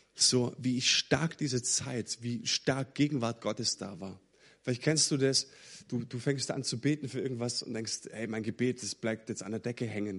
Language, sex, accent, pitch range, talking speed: German, male, German, 115-140 Hz, 205 wpm